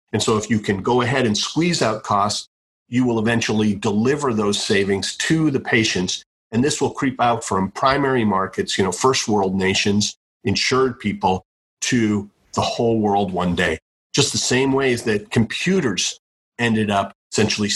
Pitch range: 100-130 Hz